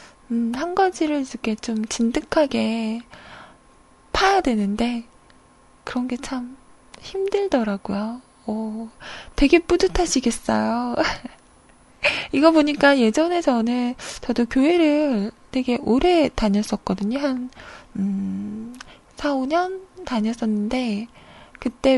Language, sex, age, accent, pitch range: Korean, female, 20-39, native, 225-315 Hz